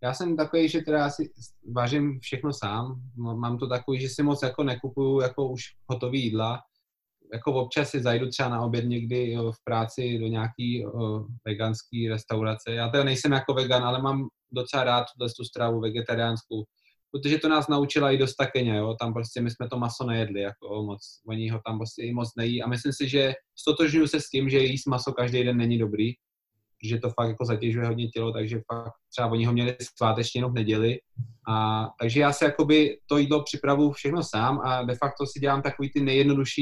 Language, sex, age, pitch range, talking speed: Slovak, male, 20-39, 115-135 Hz, 205 wpm